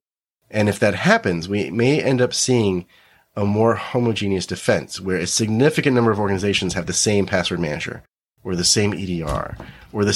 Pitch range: 90-120 Hz